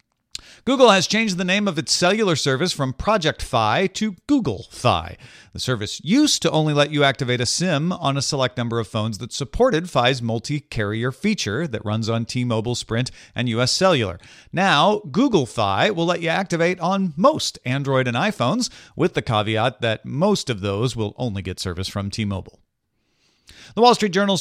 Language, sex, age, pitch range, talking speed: English, male, 40-59, 115-175 Hz, 180 wpm